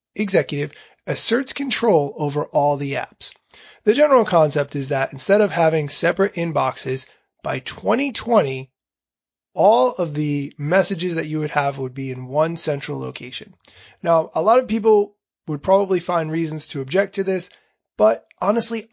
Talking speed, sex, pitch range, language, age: 150 wpm, male, 150-200 Hz, English, 20-39